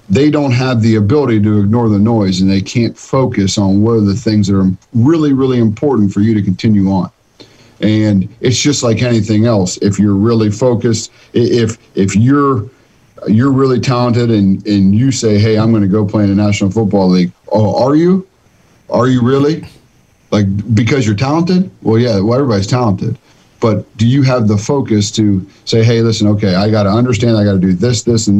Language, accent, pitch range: English, American, 105-120 Hz